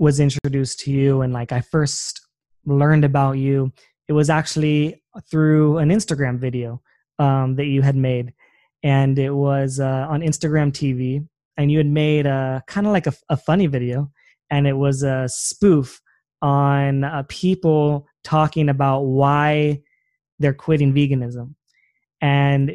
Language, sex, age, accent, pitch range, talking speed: English, male, 20-39, American, 135-155 Hz, 150 wpm